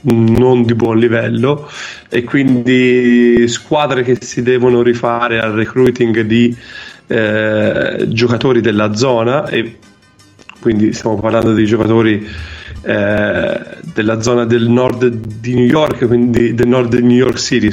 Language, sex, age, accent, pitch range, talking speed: Italian, male, 30-49, native, 110-125 Hz, 130 wpm